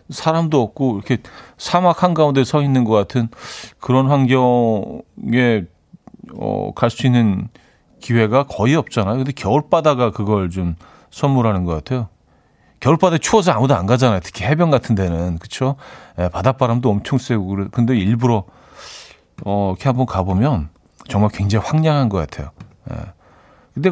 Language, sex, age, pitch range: Korean, male, 40-59, 100-135 Hz